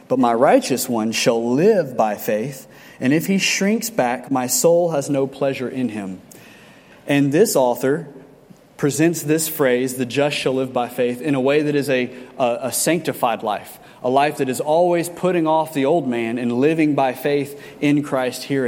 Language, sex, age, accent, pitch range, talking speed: English, male, 30-49, American, 125-160 Hz, 190 wpm